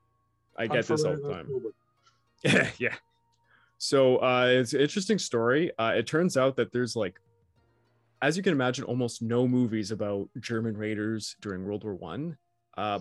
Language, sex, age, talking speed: English, male, 20-39, 165 wpm